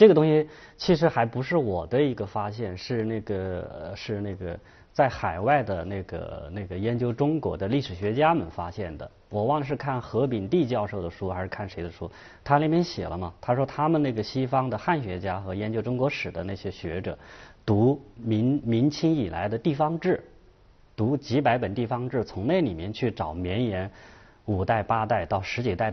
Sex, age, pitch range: male, 30-49, 95-135 Hz